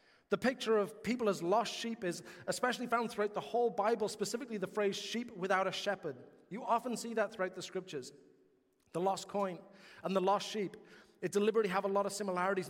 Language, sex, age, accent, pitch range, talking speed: English, male, 30-49, British, 170-210 Hz, 200 wpm